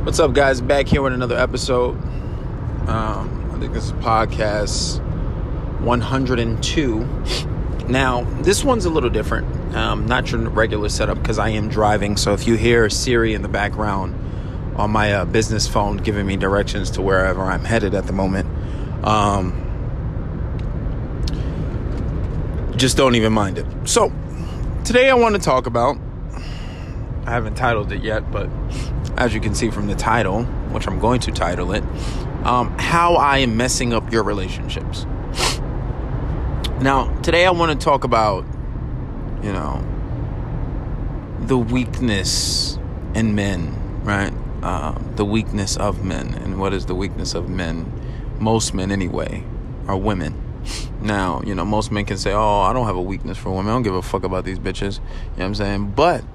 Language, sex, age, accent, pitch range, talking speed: English, male, 20-39, American, 95-120 Hz, 165 wpm